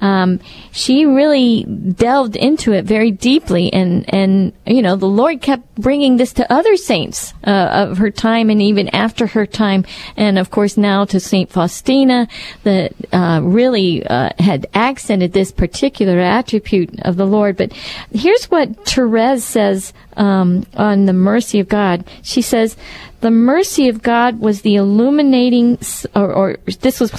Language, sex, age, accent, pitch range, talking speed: English, female, 50-69, American, 195-245 Hz, 160 wpm